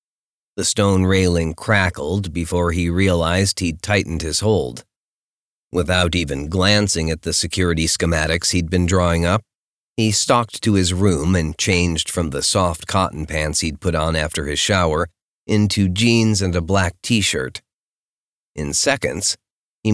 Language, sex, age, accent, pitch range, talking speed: English, male, 40-59, American, 80-100 Hz, 145 wpm